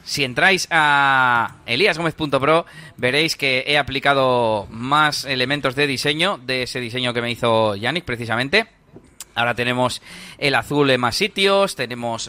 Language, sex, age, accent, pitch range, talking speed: Spanish, male, 30-49, Spanish, 115-150 Hz, 135 wpm